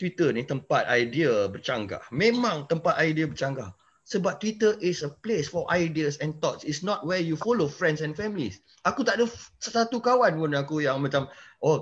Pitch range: 145-195 Hz